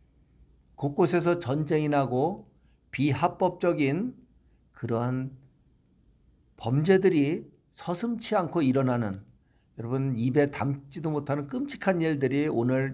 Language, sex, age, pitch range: Korean, male, 50-69, 110-155 Hz